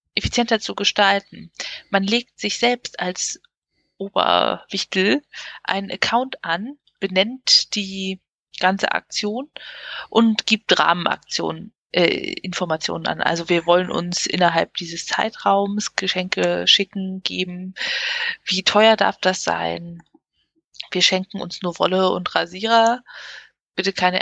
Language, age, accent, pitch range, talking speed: German, 20-39, German, 180-230 Hz, 110 wpm